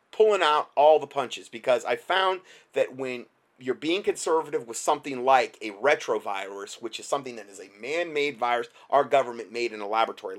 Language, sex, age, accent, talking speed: English, male, 30-49, American, 185 wpm